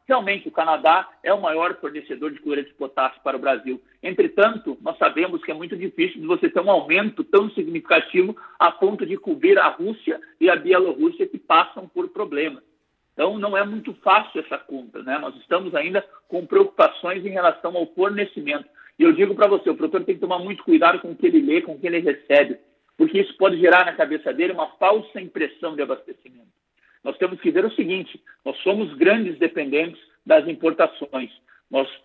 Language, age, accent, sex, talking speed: Portuguese, 50-69, Brazilian, male, 195 wpm